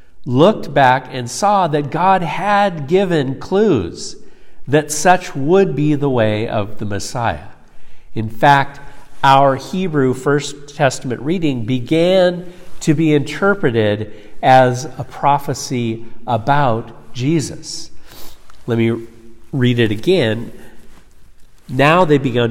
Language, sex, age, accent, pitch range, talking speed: English, male, 50-69, American, 115-150 Hz, 110 wpm